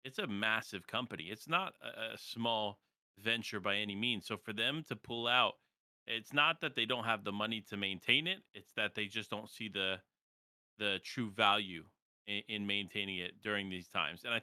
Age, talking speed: 30-49, 205 wpm